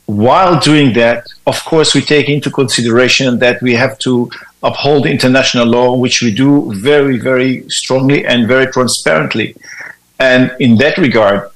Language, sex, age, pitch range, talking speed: English, male, 50-69, 115-140 Hz, 150 wpm